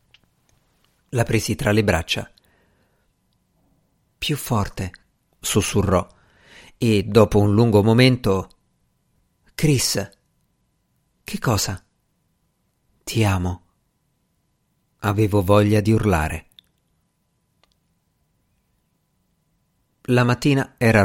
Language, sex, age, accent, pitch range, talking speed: Italian, male, 50-69, native, 105-135 Hz, 70 wpm